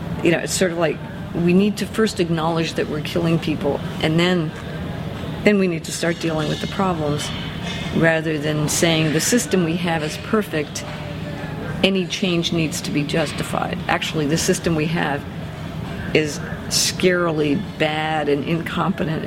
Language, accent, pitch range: English, American, 155-190 Hz